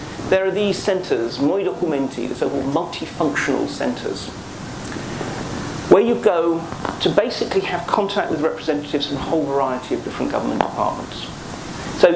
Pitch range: 140-205 Hz